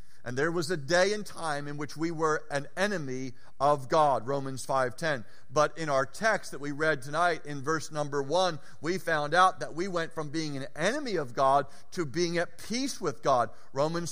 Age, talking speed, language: 50-69, 205 wpm, English